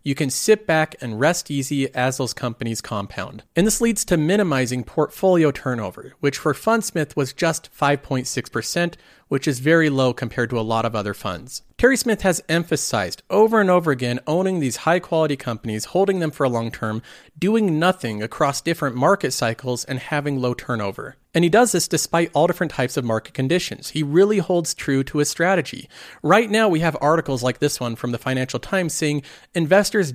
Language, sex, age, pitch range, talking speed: English, male, 40-59, 130-180 Hz, 190 wpm